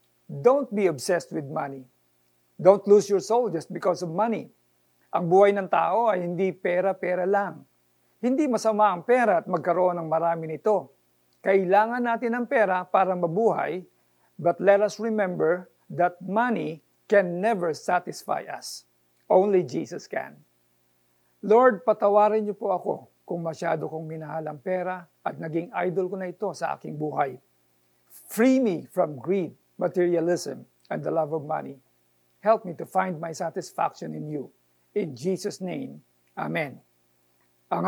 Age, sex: 50-69, male